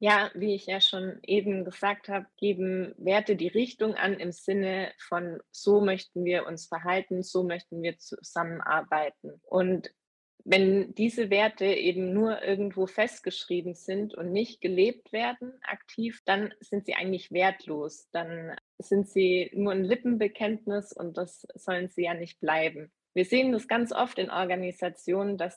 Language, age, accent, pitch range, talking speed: German, 20-39, German, 175-215 Hz, 155 wpm